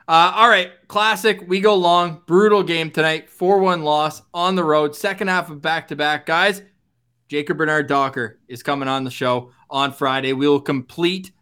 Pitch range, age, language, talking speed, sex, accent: 135-180 Hz, 20-39, English, 170 wpm, male, American